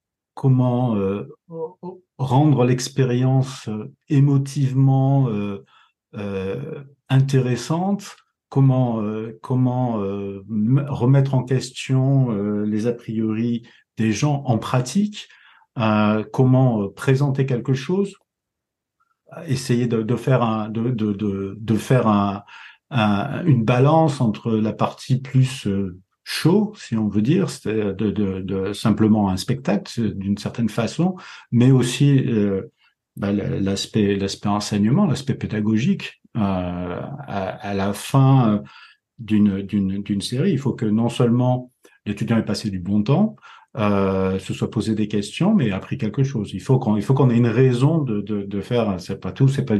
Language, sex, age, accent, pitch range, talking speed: French, male, 50-69, French, 105-135 Hz, 150 wpm